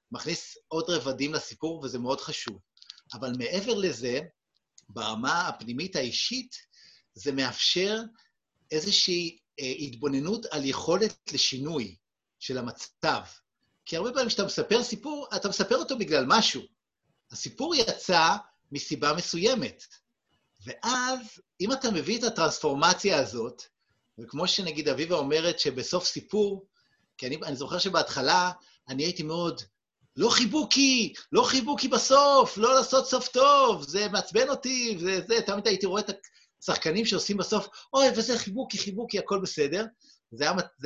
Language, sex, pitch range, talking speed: Hebrew, male, 155-245 Hz, 130 wpm